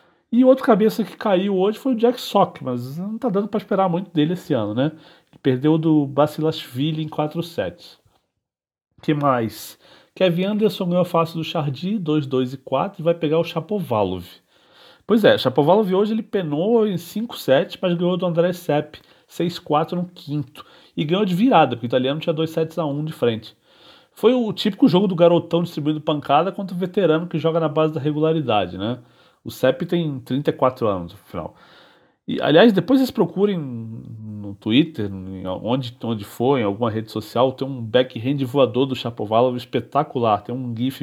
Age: 40-59